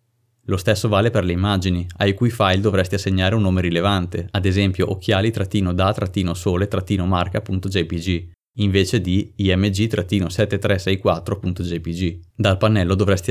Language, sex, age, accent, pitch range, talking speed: Italian, male, 30-49, native, 90-105 Hz, 105 wpm